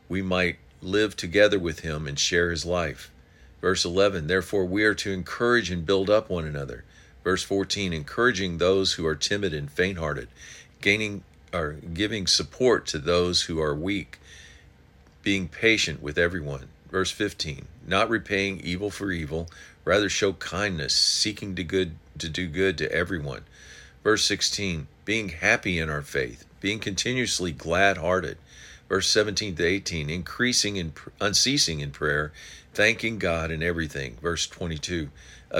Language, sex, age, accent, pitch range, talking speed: English, male, 50-69, American, 80-100 Hz, 150 wpm